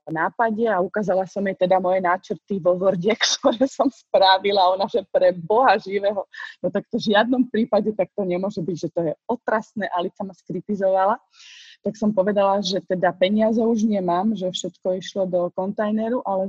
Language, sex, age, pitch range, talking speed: Slovak, female, 20-39, 165-195 Hz, 175 wpm